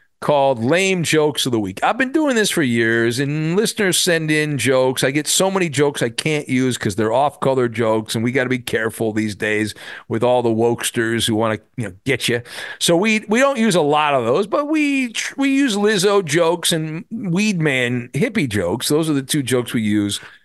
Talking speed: 220 wpm